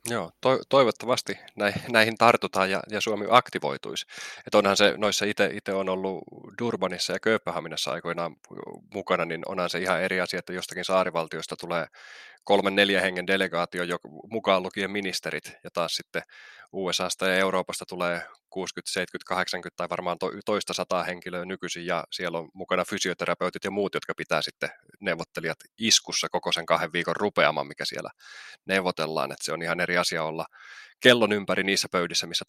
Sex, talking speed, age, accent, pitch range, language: male, 155 wpm, 20-39, native, 90-110 Hz, Finnish